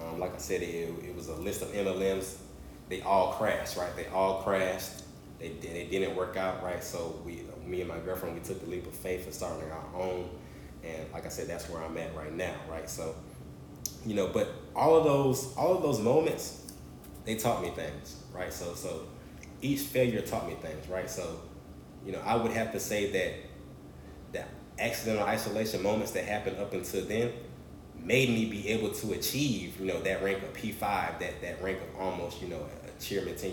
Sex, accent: male, American